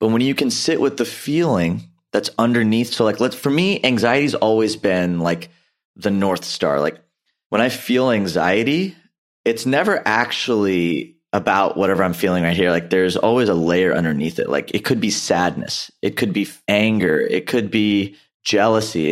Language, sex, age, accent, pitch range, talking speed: English, male, 30-49, American, 95-125 Hz, 175 wpm